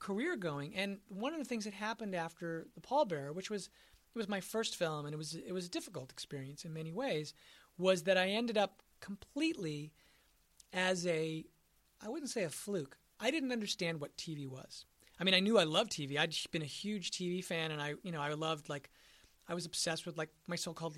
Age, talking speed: 40-59, 215 wpm